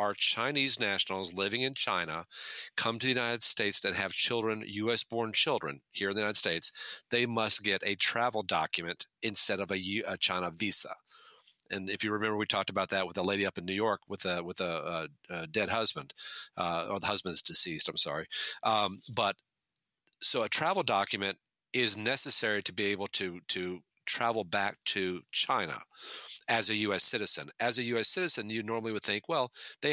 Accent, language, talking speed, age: American, English, 190 wpm, 40-59